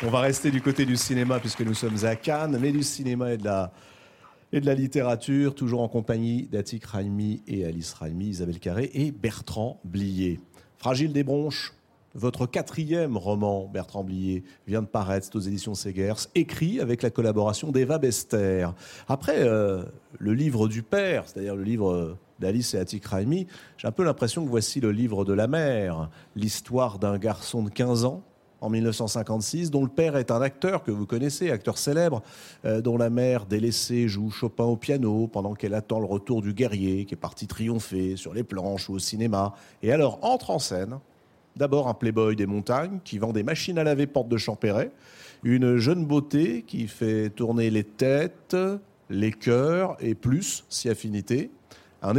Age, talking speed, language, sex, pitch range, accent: 40-59, 180 wpm, French, male, 105-135 Hz, French